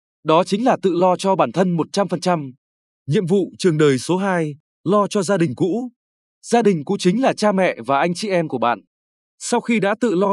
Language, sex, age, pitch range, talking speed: Vietnamese, male, 20-39, 145-205 Hz, 220 wpm